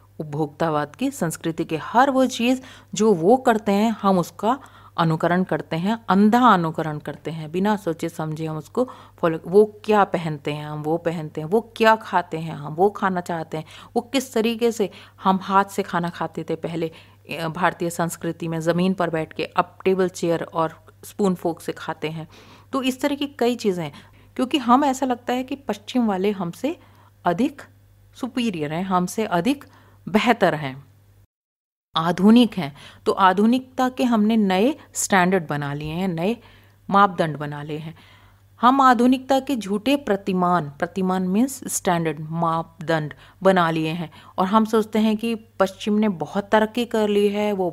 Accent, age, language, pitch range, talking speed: Indian, 40-59, English, 160-220 Hz, 130 wpm